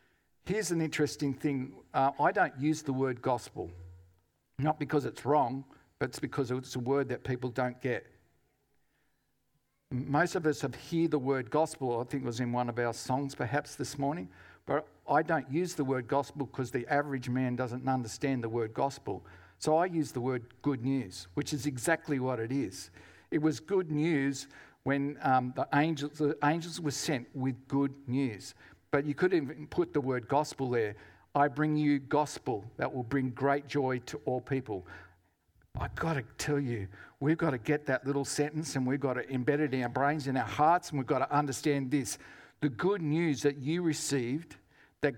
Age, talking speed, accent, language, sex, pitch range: 50-69, 195 wpm, Australian, English, male, 130-150 Hz